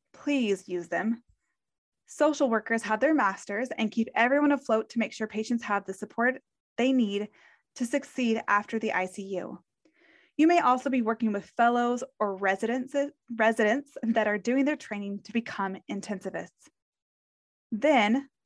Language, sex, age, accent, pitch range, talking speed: English, female, 20-39, American, 205-255 Hz, 145 wpm